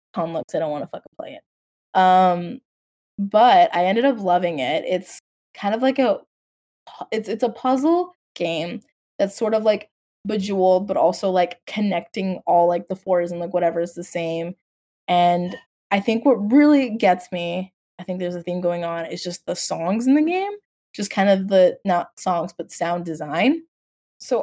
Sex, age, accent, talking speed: female, 20-39, American, 185 wpm